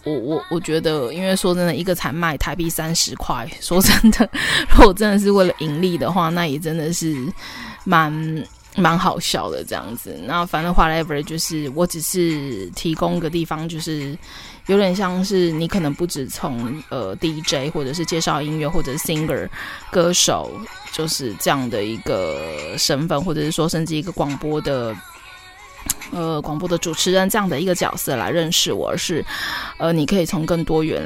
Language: Chinese